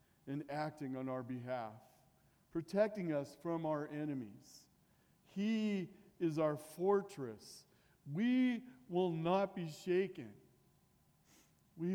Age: 40-59